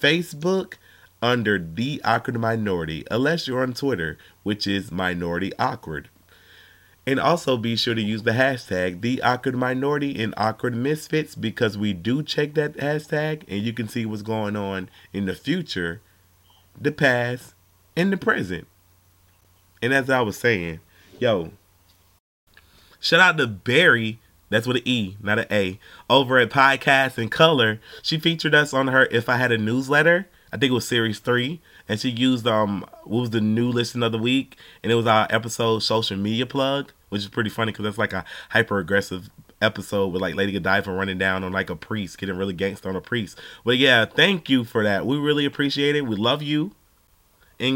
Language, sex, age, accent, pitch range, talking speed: English, male, 30-49, American, 95-130 Hz, 185 wpm